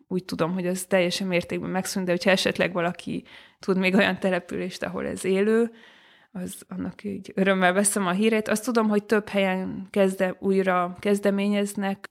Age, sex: 20-39, female